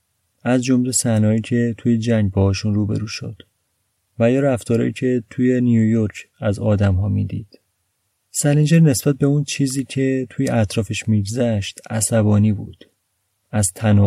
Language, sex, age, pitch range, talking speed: Persian, male, 30-49, 100-125 Hz, 135 wpm